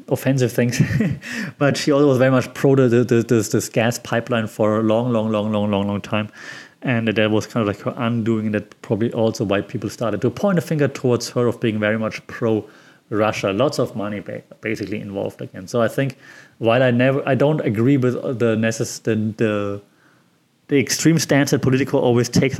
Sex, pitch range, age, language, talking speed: male, 115-150 Hz, 30-49, English, 205 wpm